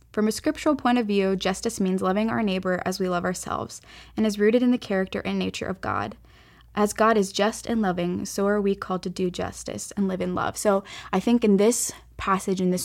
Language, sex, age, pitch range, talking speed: English, female, 10-29, 180-230 Hz, 235 wpm